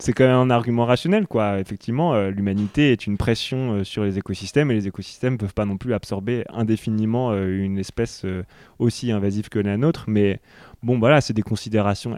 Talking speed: 210 wpm